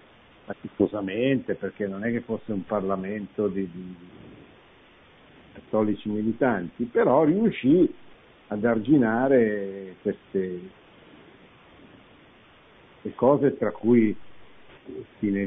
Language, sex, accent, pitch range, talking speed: Italian, male, native, 100-130 Hz, 85 wpm